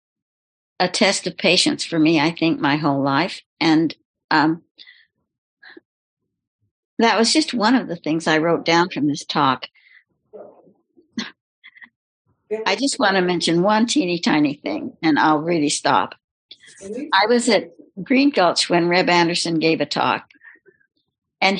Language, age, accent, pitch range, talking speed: English, 60-79, American, 165-245 Hz, 140 wpm